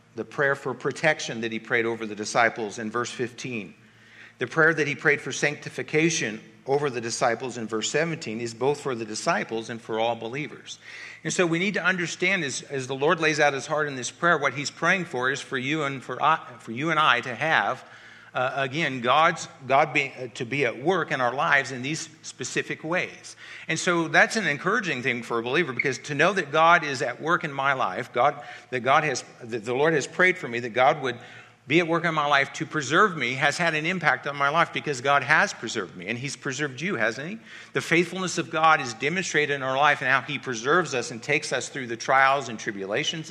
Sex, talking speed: male, 230 wpm